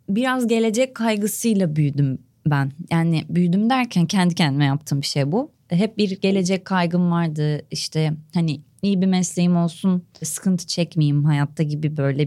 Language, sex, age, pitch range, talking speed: Turkish, female, 30-49, 160-210 Hz, 145 wpm